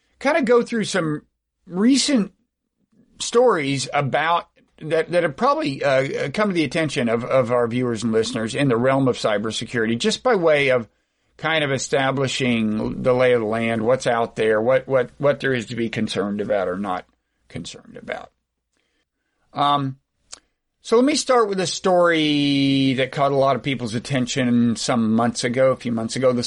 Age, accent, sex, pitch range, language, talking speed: 50-69, American, male, 125-175 Hz, English, 180 wpm